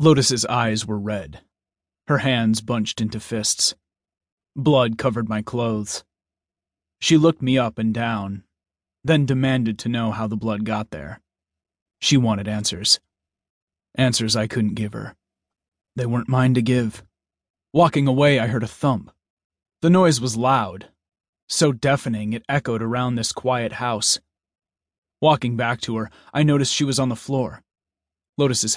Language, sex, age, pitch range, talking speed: English, male, 30-49, 95-130 Hz, 150 wpm